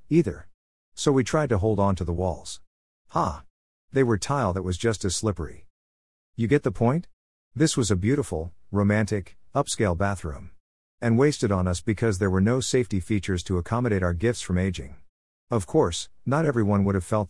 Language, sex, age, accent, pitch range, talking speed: English, male, 50-69, American, 90-115 Hz, 185 wpm